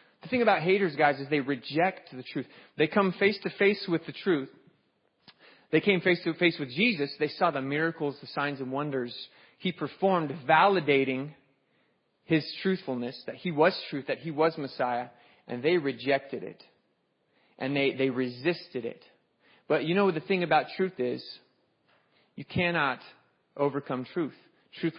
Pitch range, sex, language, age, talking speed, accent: 135-180 Hz, male, English, 30-49, 165 wpm, American